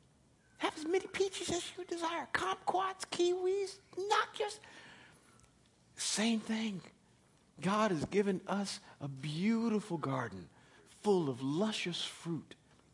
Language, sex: English, male